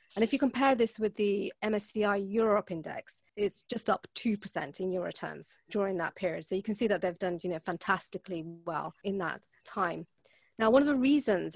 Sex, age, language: female, 30-49, English